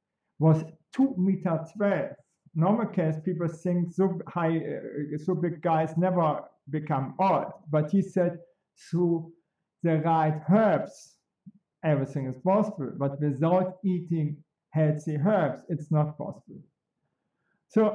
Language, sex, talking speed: English, male, 115 wpm